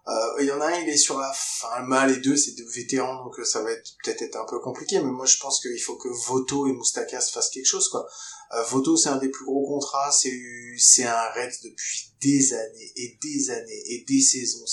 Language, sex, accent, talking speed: French, male, French, 250 wpm